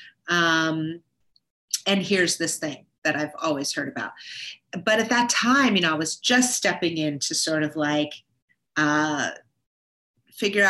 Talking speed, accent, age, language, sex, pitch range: 145 wpm, American, 30-49, English, female, 155-195 Hz